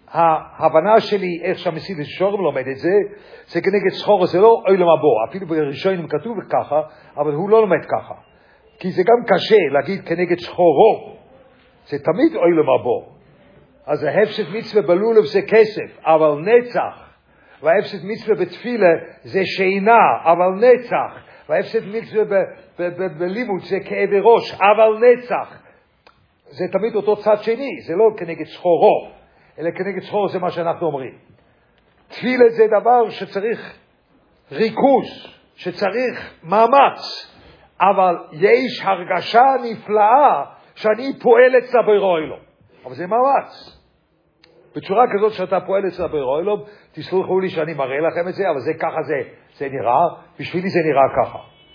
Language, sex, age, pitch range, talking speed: English, male, 50-69, 170-220 Hz, 125 wpm